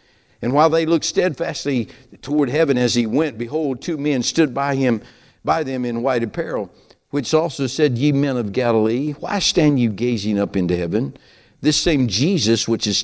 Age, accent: 60-79, American